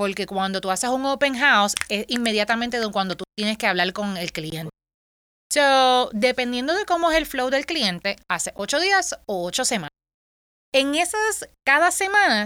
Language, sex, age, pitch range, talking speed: Spanish, female, 30-49, 205-295 Hz, 180 wpm